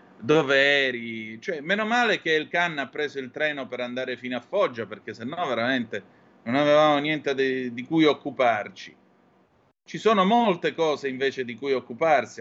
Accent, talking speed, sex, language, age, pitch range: native, 170 wpm, male, Italian, 30-49, 125-185 Hz